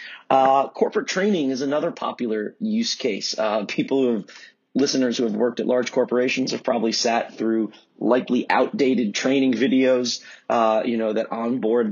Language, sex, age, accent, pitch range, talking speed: English, male, 30-49, American, 115-140 Hz, 160 wpm